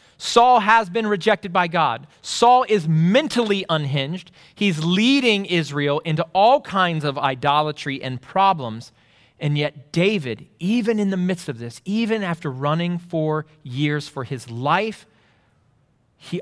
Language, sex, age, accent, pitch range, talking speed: English, male, 30-49, American, 130-195 Hz, 140 wpm